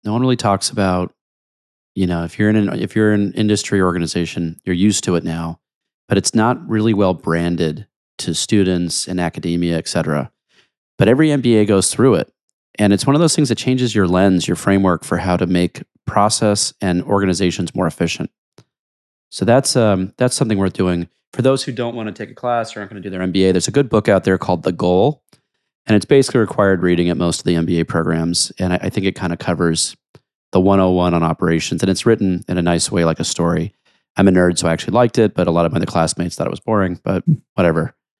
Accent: American